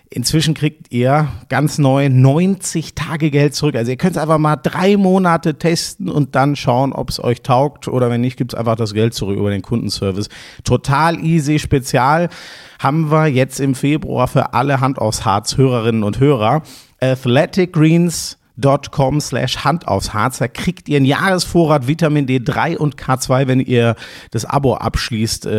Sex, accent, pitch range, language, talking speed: male, German, 115-150 Hz, German, 170 wpm